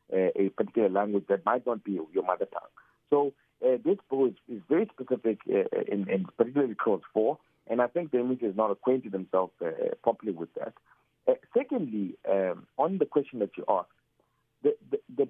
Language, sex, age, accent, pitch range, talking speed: English, male, 60-79, South African, 110-175 Hz, 195 wpm